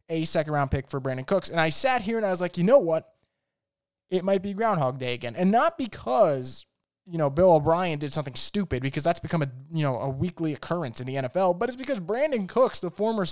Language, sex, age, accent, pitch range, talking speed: English, male, 20-39, American, 155-195 Hz, 240 wpm